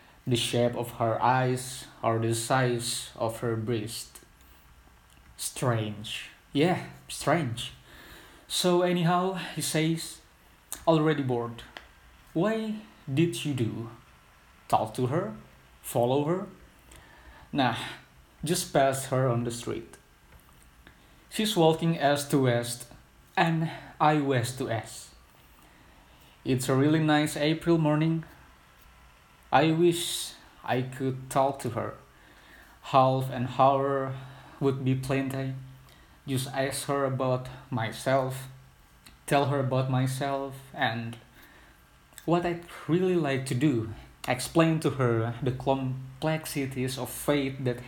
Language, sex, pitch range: Indonesian, male, 115-145 Hz